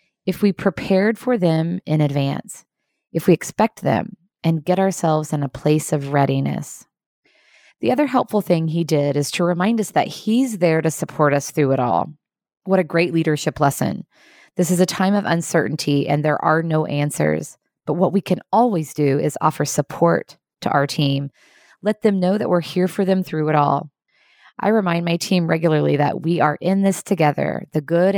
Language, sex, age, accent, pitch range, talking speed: English, female, 20-39, American, 150-195 Hz, 190 wpm